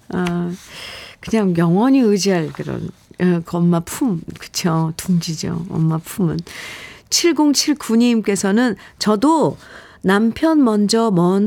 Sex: female